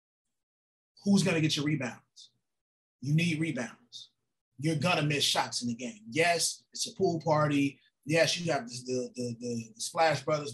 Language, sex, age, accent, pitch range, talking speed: English, male, 20-39, American, 120-155 Hz, 165 wpm